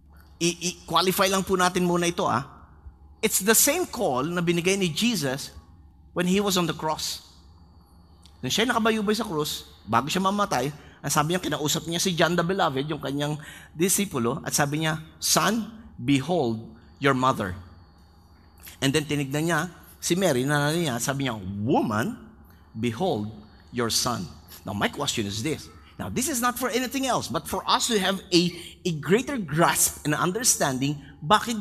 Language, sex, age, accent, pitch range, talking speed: English, male, 30-49, Filipino, 120-200 Hz, 165 wpm